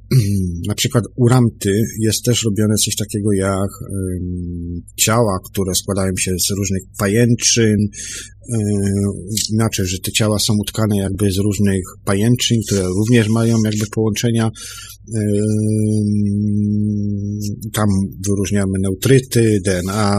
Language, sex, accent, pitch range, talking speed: Polish, male, native, 95-110 Hz, 105 wpm